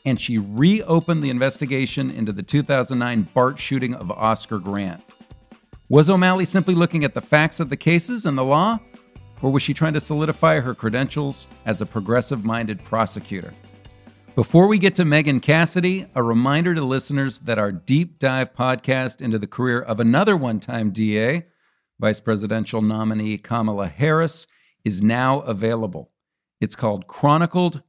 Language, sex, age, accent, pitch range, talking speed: English, male, 50-69, American, 115-160 Hz, 150 wpm